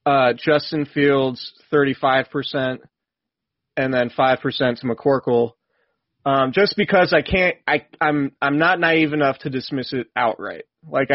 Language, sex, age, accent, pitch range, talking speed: English, male, 30-49, American, 125-155 Hz, 135 wpm